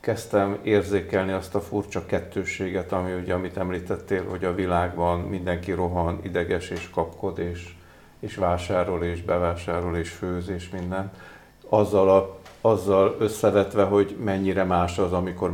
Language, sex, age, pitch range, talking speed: Hungarian, male, 50-69, 85-100 Hz, 140 wpm